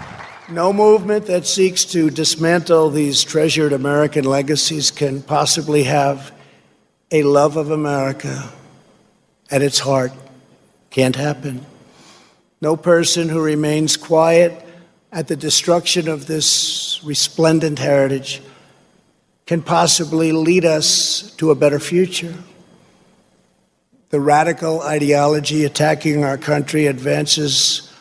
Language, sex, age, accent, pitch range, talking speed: English, male, 50-69, American, 145-170 Hz, 105 wpm